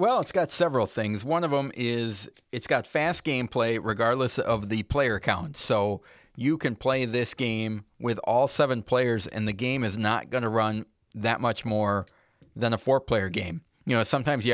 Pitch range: 105-125 Hz